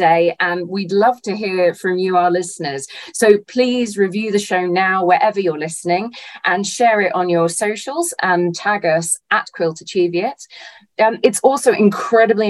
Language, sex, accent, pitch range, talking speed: English, female, British, 170-215 Hz, 170 wpm